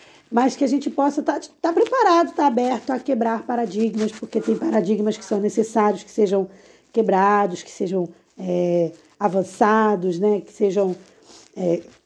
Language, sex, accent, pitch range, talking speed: Portuguese, female, Brazilian, 210-275 Hz, 160 wpm